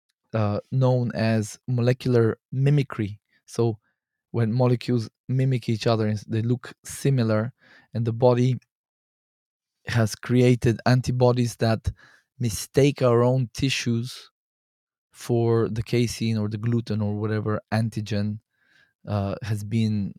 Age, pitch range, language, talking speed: 20-39, 110-125 Hz, English, 115 wpm